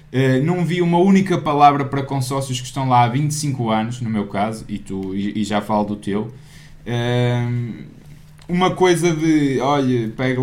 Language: Portuguese